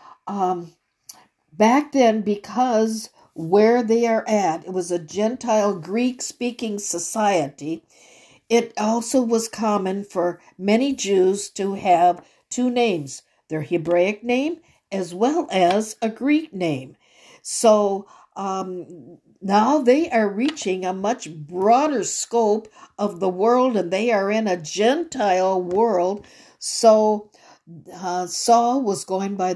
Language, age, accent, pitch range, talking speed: English, 60-79, American, 180-225 Hz, 120 wpm